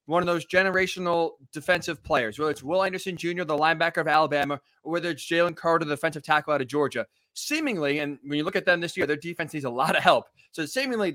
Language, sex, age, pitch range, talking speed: English, male, 20-39, 155-195 Hz, 235 wpm